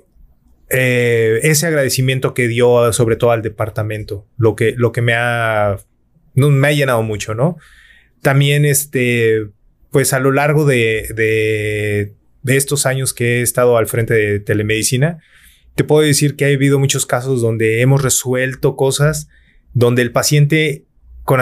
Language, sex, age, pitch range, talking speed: Spanish, male, 30-49, 115-140 Hz, 155 wpm